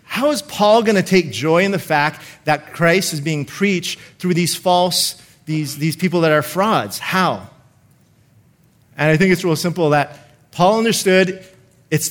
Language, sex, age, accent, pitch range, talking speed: English, male, 30-49, American, 155-195 Hz, 175 wpm